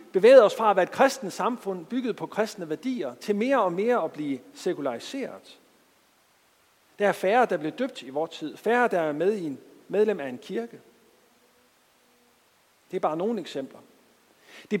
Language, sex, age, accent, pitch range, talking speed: Danish, male, 50-69, native, 170-240 Hz, 180 wpm